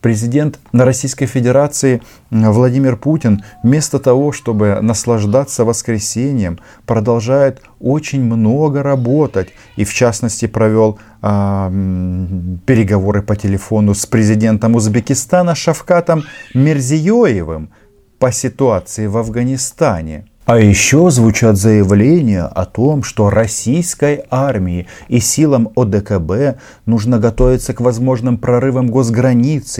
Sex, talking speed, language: male, 100 wpm, Russian